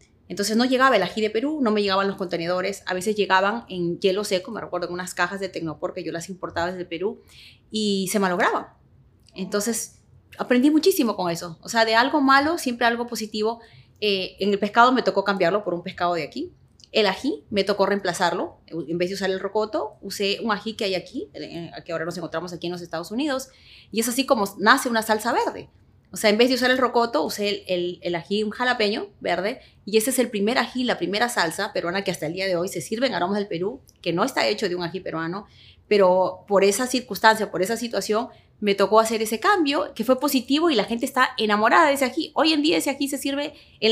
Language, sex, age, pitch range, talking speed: English, female, 30-49, 180-235 Hz, 230 wpm